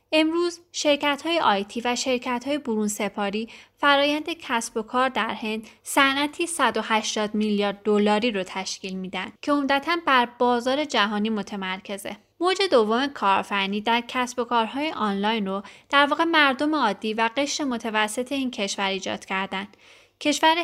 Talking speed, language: 145 wpm, Persian